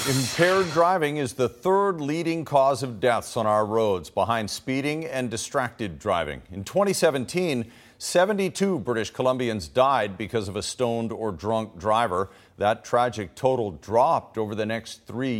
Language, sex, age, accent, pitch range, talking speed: English, male, 50-69, American, 110-155 Hz, 150 wpm